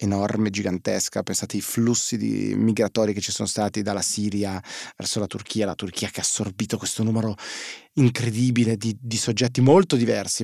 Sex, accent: male, native